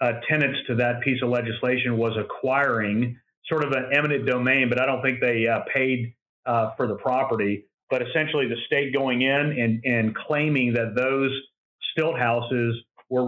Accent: American